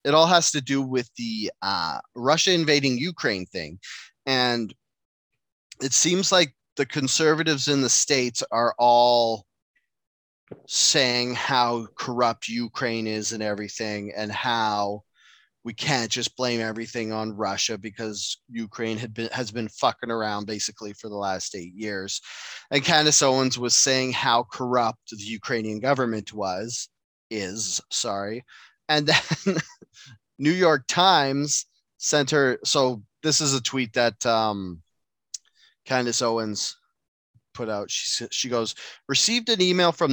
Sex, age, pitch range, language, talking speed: male, 30-49, 115-145 Hz, English, 135 wpm